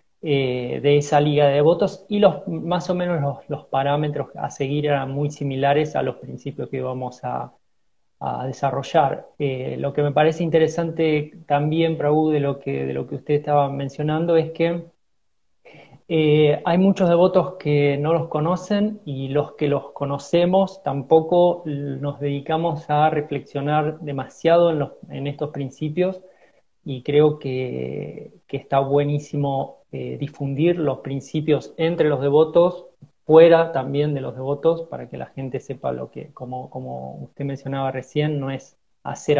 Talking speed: 155 wpm